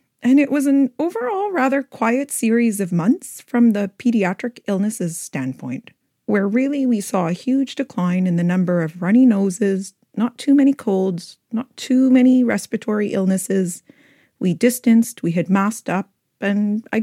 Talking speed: 160 wpm